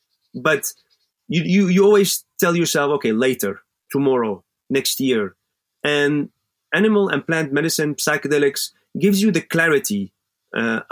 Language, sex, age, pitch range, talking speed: German, male, 30-49, 135-185 Hz, 125 wpm